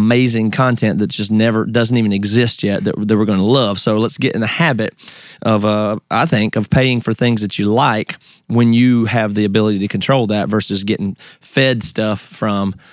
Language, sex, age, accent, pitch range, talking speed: English, male, 30-49, American, 105-125 Hz, 210 wpm